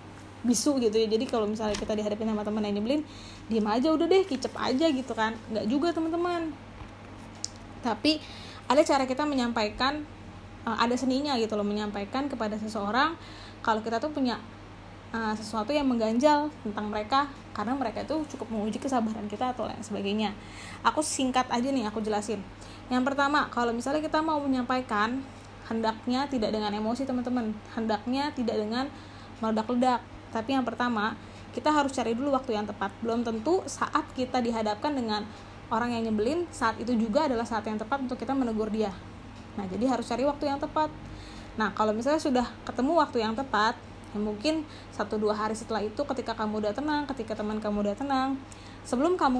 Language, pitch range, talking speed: Indonesian, 215-270 Hz, 170 wpm